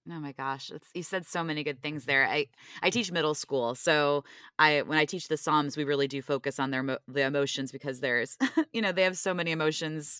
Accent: American